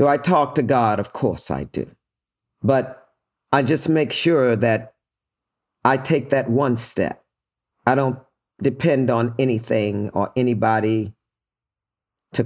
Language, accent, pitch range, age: English, American, 115-160 Hz, 50-69